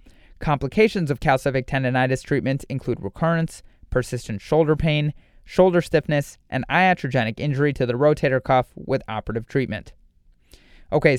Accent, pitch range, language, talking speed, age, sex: American, 120-160 Hz, English, 125 wpm, 30-49, male